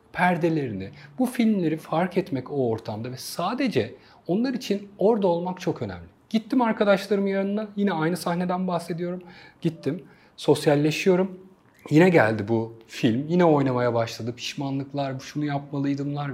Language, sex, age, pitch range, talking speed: Turkish, male, 40-59, 145-205 Hz, 125 wpm